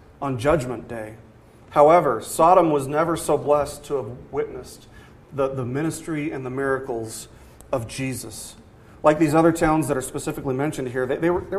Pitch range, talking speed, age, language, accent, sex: 130-170 Hz, 160 wpm, 40-59, English, American, male